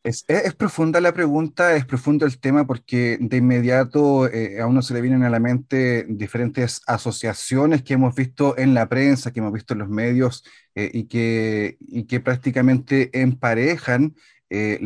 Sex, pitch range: male, 115-145 Hz